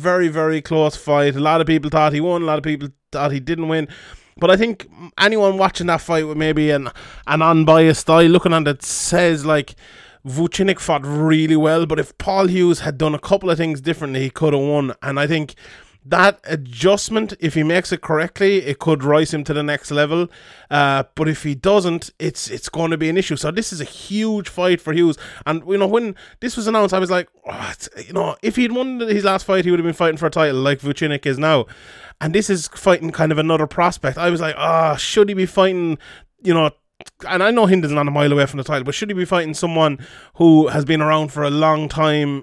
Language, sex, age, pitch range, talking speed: English, male, 20-39, 150-180 Hz, 240 wpm